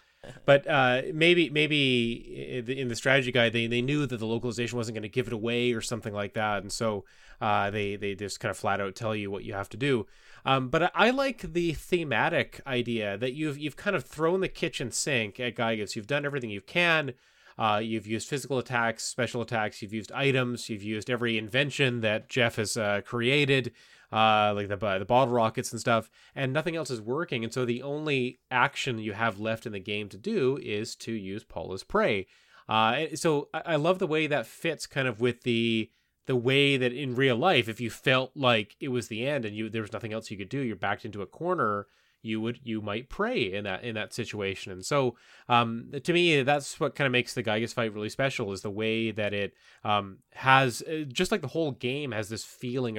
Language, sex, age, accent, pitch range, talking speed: English, male, 30-49, American, 110-135 Hz, 220 wpm